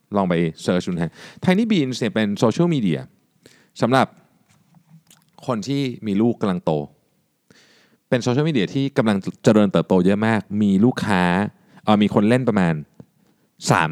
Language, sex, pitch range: Thai, male, 90-130 Hz